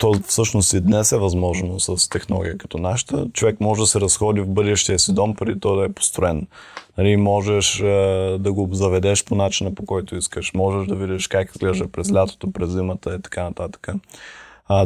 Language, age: Bulgarian, 20-39